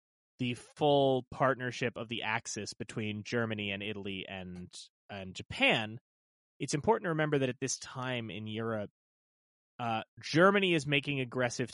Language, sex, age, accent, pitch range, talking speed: English, male, 30-49, American, 105-145 Hz, 145 wpm